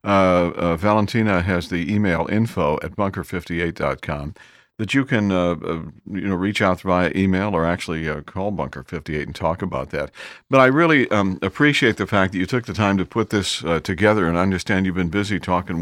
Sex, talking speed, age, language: male, 200 wpm, 50-69, English